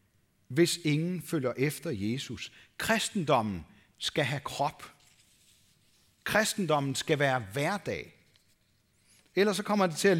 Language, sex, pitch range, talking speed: Danish, male, 125-180 Hz, 110 wpm